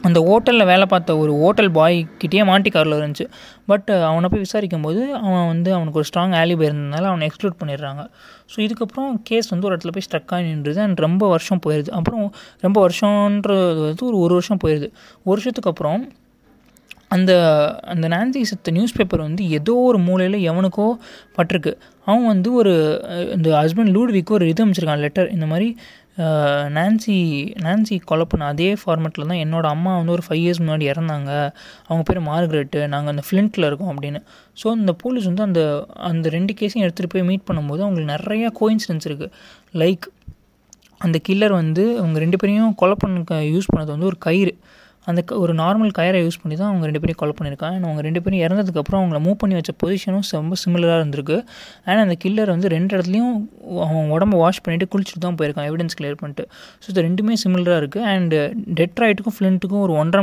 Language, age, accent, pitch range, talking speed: Tamil, 20-39, native, 160-205 Hz, 175 wpm